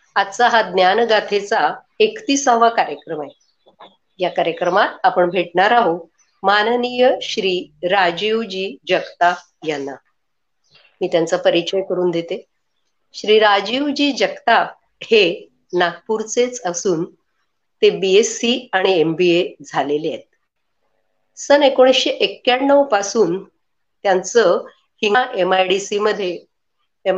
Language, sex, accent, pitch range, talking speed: Marathi, female, native, 180-250 Hz, 70 wpm